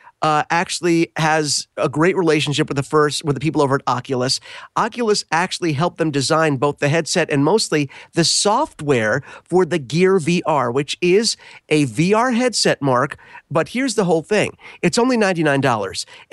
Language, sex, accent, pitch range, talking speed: English, male, American, 140-185 Hz, 165 wpm